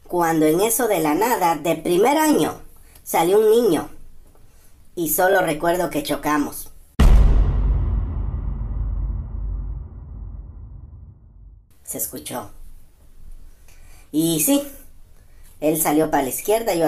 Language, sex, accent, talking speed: Spanish, male, American, 95 wpm